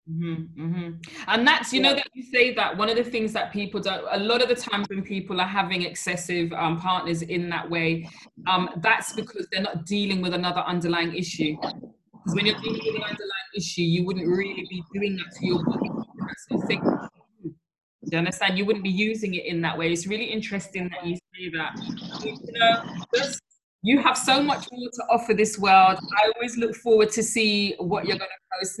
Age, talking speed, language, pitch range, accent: 20-39, 210 wpm, English, 180-220 Hz, British